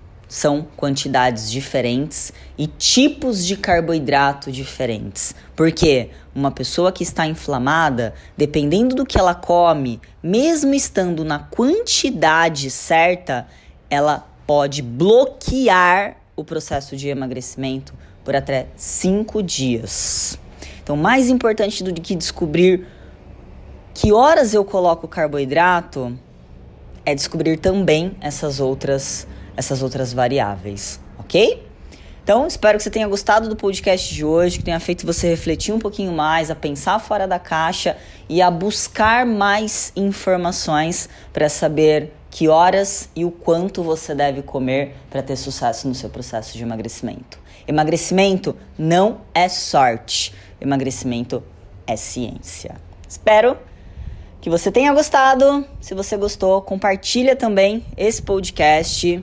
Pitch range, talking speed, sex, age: 125-190 Hz, 120 wpm, female, 20-39